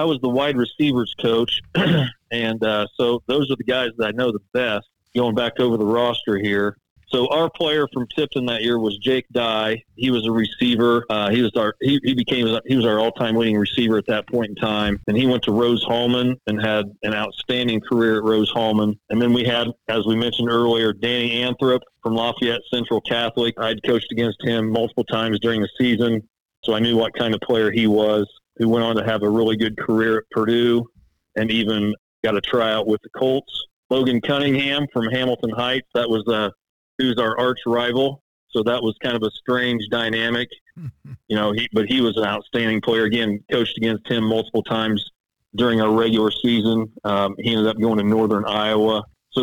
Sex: male